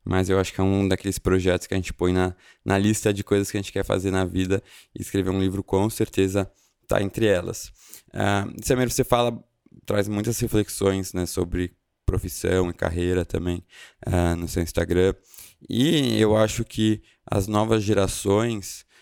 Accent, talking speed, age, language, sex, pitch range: Brazilian, 180 wpm, 20-39, Portuguese, male, 95-120 Hz